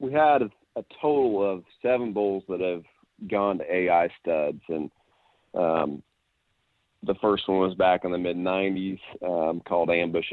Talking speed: 165 wpm